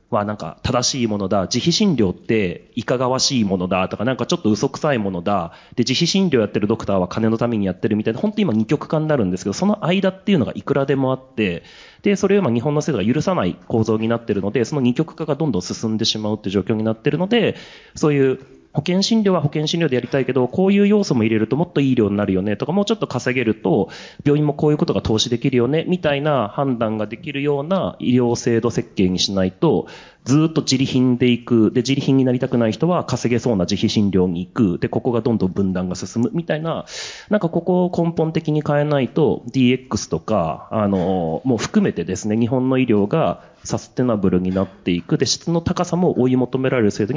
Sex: male